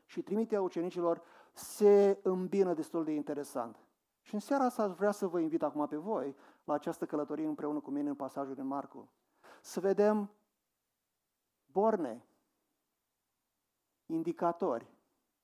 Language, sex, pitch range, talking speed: Romanian, male, 145-190 Hz, 130 wpm